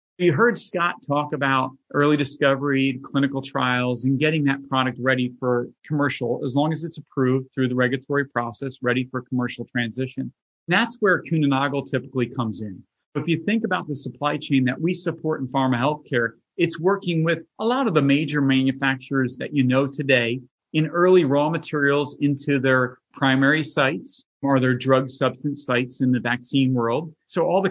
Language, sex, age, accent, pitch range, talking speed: English, male, 40-59, American, 135-170 Hz, 180 wpm